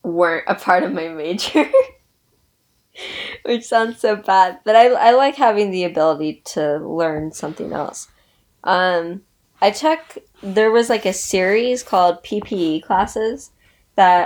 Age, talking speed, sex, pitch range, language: 20-39, 140 wpm, female, 180-230 Hz, English